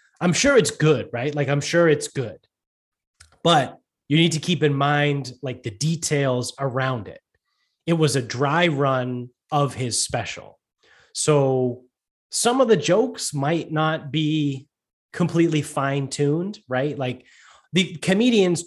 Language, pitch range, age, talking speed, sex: English, 135-170 Hz, 30-49, 140 wpm, male